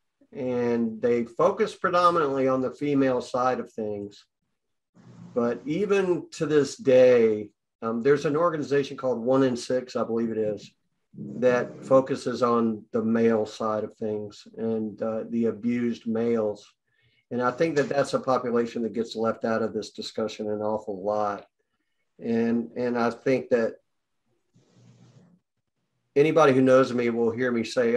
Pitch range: 110-130 Hz